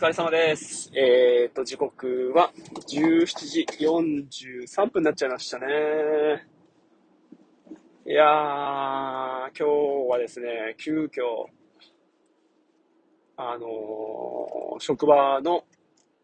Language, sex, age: Japanese, male, 20-39